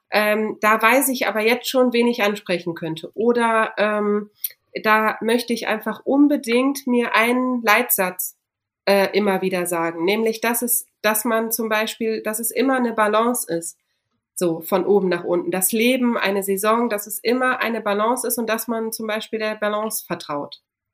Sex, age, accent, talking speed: female, 30-49, German, 170 wpm